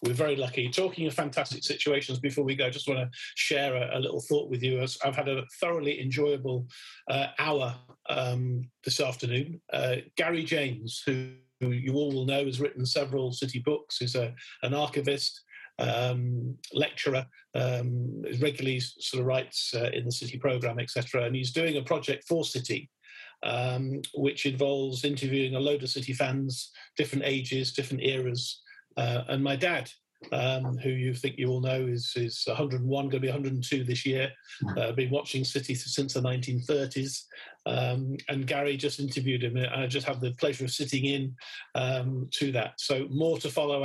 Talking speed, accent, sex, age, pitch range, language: 175 wpm, British, male, 50-69, 125-140 Hz, English